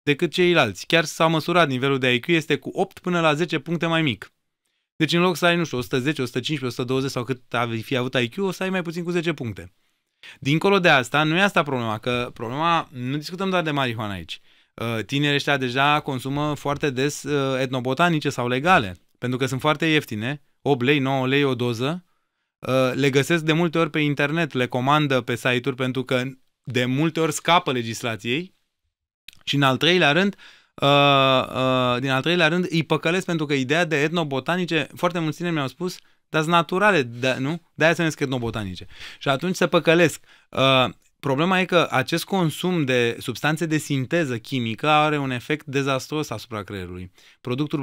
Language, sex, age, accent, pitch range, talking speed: Romanian, male, 20-39, native, 130-165 Hz, 185 wpm